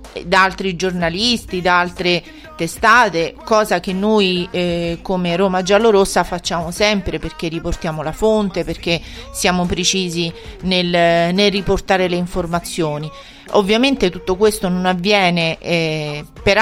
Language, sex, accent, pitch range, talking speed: Italian, female, native, 175-210 Hz, 125 wpm